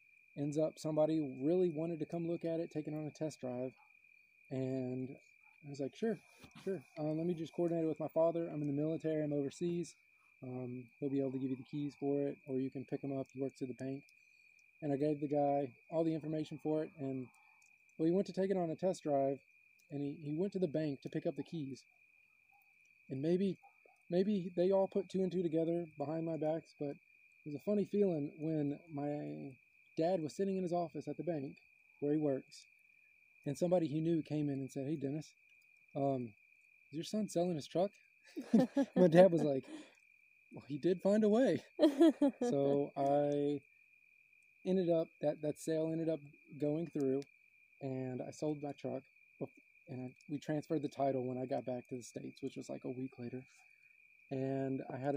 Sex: male